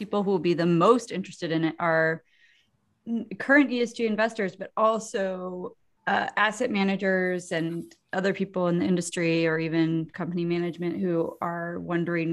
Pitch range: 160-200 Hz